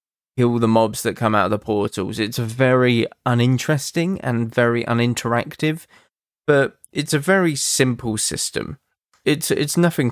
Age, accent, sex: 20-39, British, male